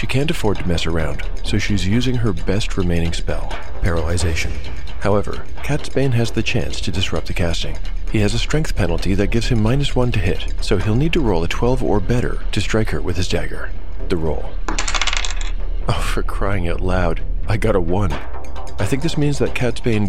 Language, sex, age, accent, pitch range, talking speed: English, male, 40-59, American, 85-110 Hz, 200 wpm